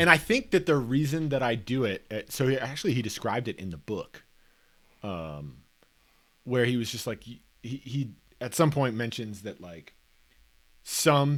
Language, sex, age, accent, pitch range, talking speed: English, male, 30-49, American, 95-135 Hz, 175 wpm